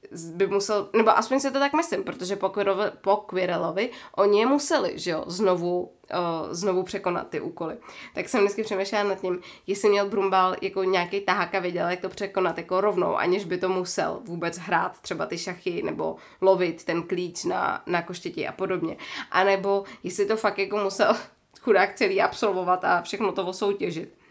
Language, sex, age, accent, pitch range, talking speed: Czech, female, 20-39, native, 180-210 Hz, 175 wpm